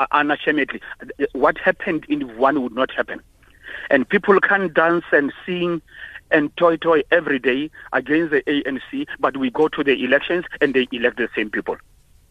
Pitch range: 130-185 Hz